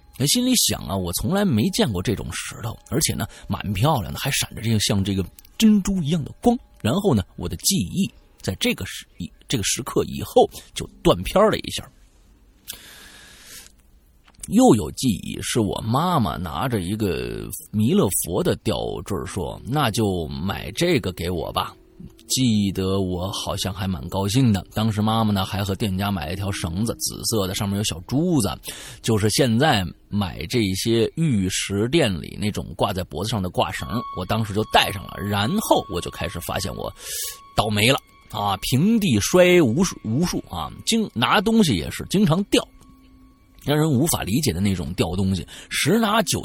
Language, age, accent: Chinese, 30-49, native